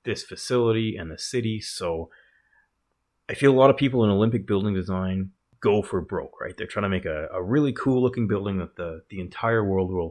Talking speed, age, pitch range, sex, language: 215 wpm, 30-49, 90-120 Hz, male, English